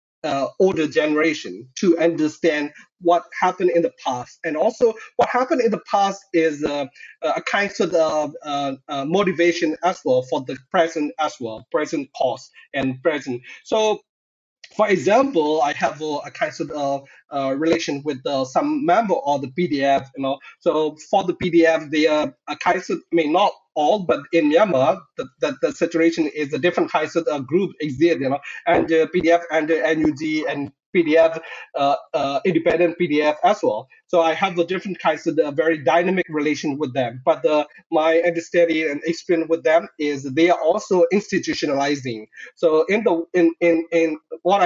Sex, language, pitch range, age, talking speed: male, English, 150-175 Hz, 30-49, 180 wpm